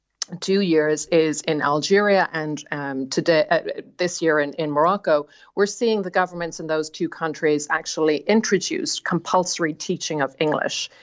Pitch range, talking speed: 150-185 Hz, 150 wpm